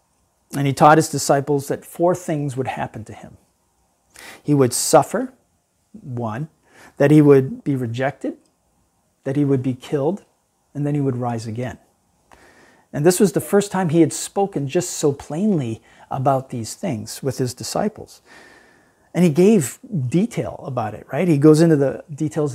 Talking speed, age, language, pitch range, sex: 165 wpm, 40-59, English, 125-160 Hz, male